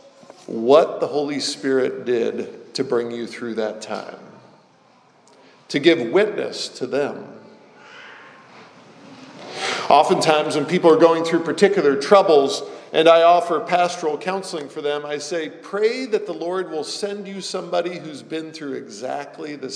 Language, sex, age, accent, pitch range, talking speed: English, male, 50-69, American, 140-175 Hz, 140 wpm